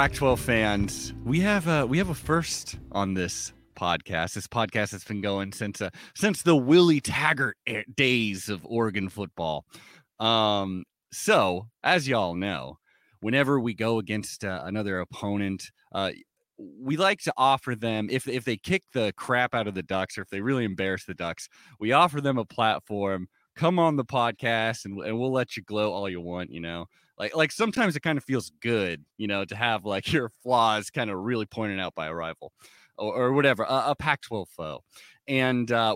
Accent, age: American, 30-49